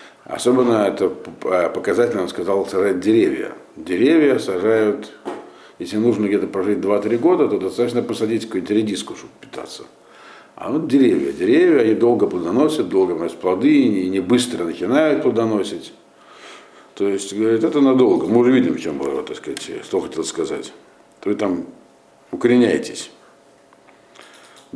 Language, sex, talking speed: Russian, male, 140 wpm